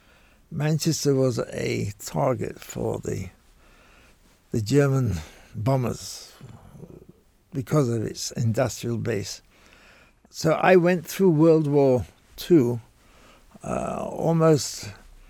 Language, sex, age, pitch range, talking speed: English, male, 60-79, 115-155 Hz, 90 wpm